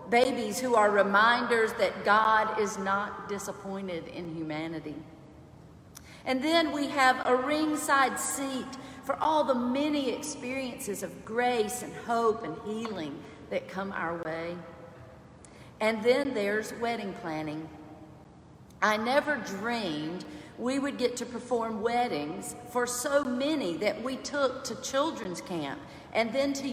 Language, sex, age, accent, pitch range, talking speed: English, female, 50-69, American, 195-270 Hz, 130 wpm